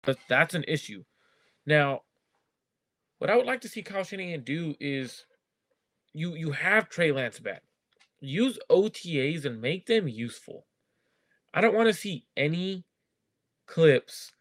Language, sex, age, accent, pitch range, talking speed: English, male, 20-39, American, 130-175 Hz, 140 wpm